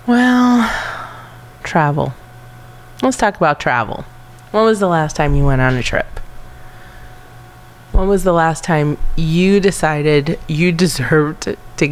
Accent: American